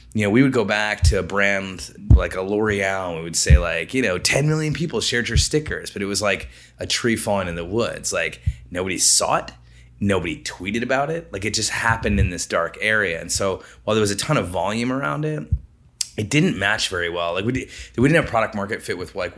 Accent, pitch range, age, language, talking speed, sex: American, 85-115 Hz, 20-39, English, 240 wpm, male